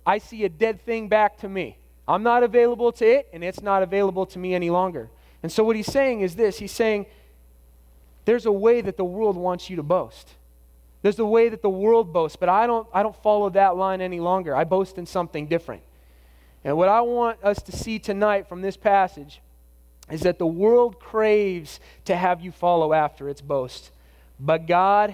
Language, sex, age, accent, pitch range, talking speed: English, male, 30-49, American, 130-200 Hz, 210 wpm